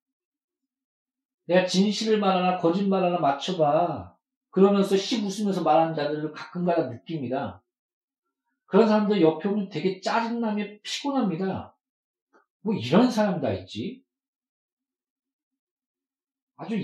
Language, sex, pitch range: Korean, male, 160-265 Hz